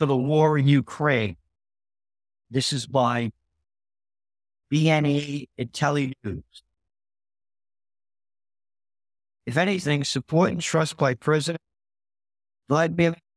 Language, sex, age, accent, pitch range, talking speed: English, male, 50-69, American, 100-145 Hz, 80 wpm